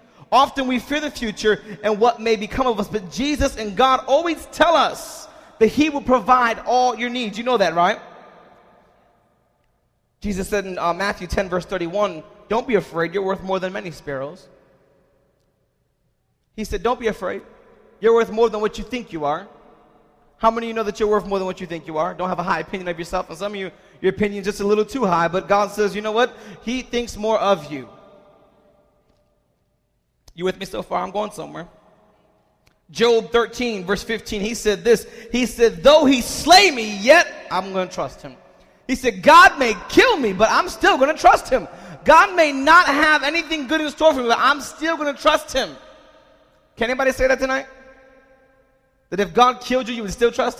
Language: English